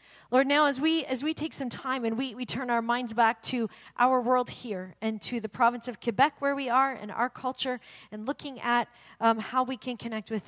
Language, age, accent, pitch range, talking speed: English, 40-59, American, 215-285 Hz, 235 wpm